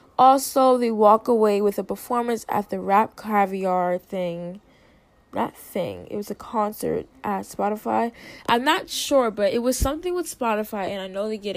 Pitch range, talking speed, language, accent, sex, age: 185-230 Hz, 175 wpm, English, American, female, 10-29